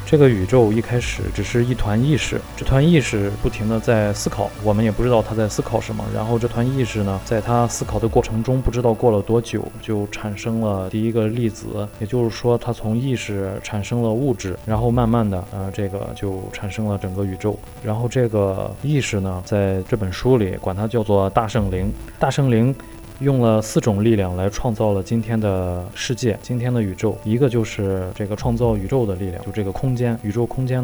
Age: 20-39